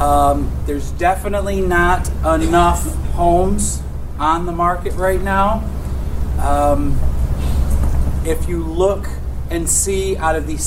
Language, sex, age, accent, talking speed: English, male, 30-49, American, 110 wpm